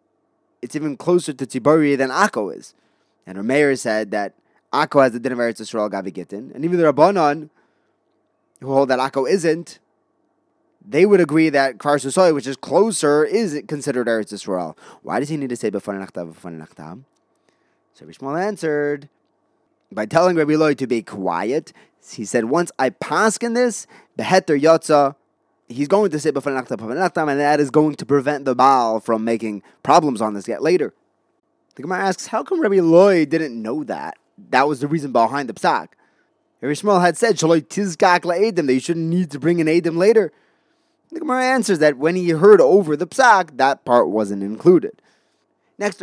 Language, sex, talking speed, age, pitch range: English, male, 175 wpm, 20-39, 135-185 Hz